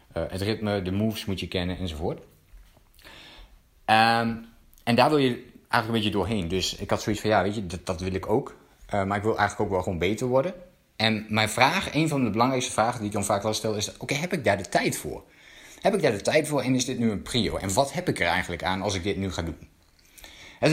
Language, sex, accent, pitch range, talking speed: Dutch, male, Dutch, 100-140 Hz, 260 wpm